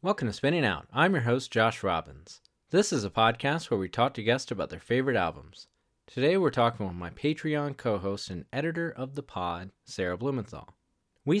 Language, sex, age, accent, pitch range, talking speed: English, male, 20-39, American, 100-140 Hz, 195 wpm